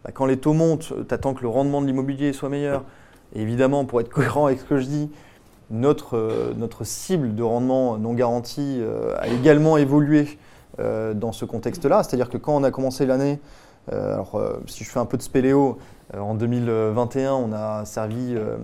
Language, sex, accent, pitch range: French, male, French, 115-140 Hz